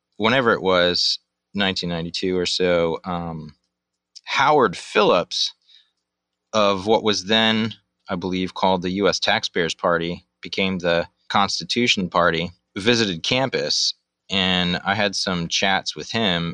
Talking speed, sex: 125 wpm, male